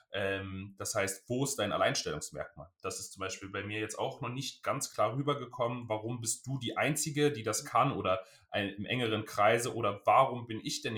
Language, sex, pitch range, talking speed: German, male, 100-120 Hz, 195 wpm